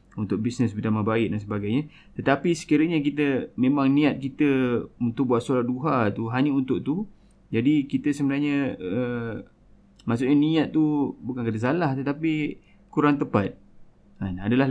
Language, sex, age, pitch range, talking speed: Malay, male, 20-39, 110-145 Hz, 145 wpm